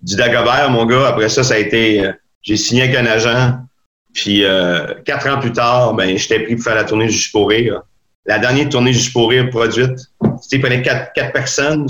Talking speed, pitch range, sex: 215 wpm, 110-135 Hz, male